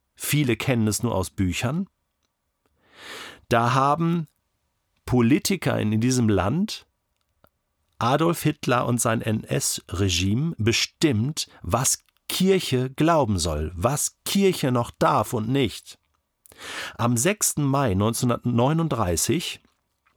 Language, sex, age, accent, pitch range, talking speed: German, male, 40-59, German, 105-155 Hz, 95 wpm